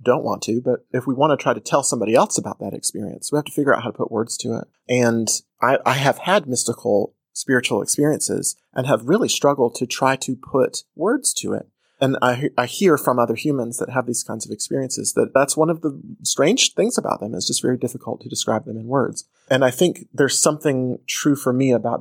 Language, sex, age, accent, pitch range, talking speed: English, male, 30-49, American, 115-140 Hz, 235 wpm